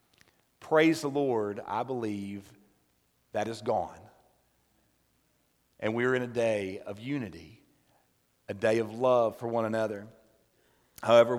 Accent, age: American, 40-59